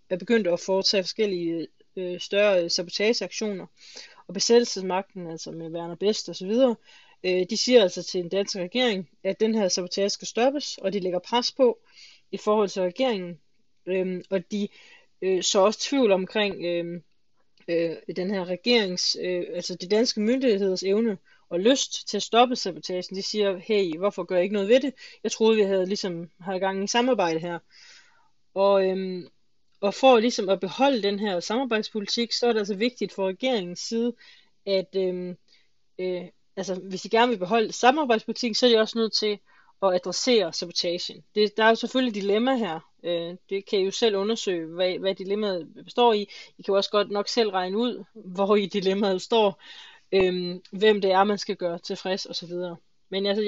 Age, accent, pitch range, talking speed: 20-39, native, 185-220 Hz, 185 wpm